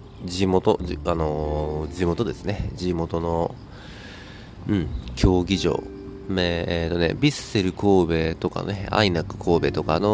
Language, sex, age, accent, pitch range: Japanese, male, 40-59, native, 80-100 Hz